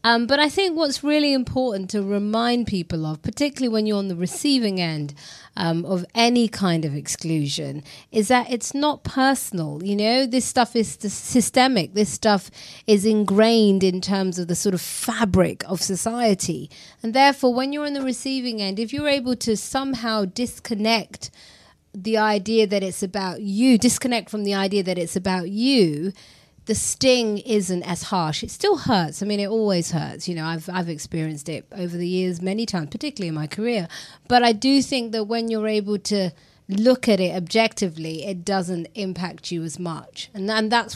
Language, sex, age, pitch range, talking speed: English, female, 30-49, 180-225 Hz, 185 wpm